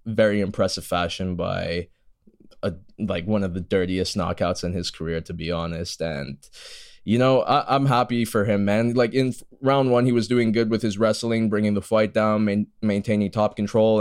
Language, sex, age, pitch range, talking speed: English, male, 10-29, 95-115 Hz, 195 wpm